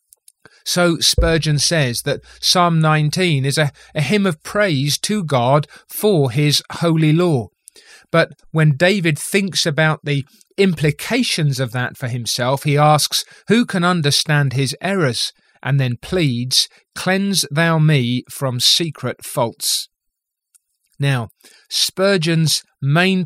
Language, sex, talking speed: English, male, 125 wpm